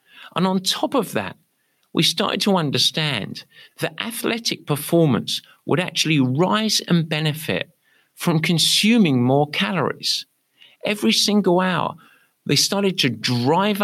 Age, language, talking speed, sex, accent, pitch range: 50-69, English, 120 wpm, male, British, 130-190 Hz